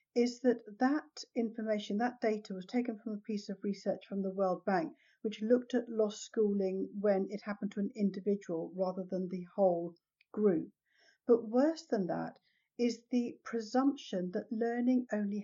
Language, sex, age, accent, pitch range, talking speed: English, female, 50-69, British, 195-240 Hz, 165 wpm